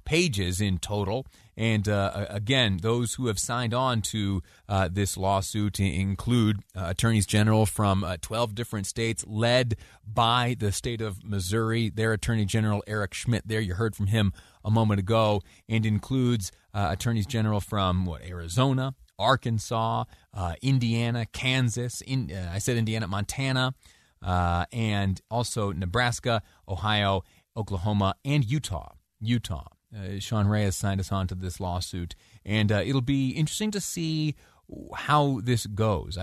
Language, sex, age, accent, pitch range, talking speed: English, male, 30-49, American, 95-120 Hz, 150 wpm